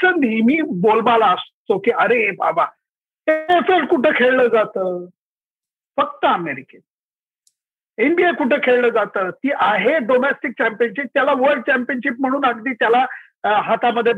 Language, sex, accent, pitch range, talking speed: Marathi, male, native, 210-280 Hz, 110 wpm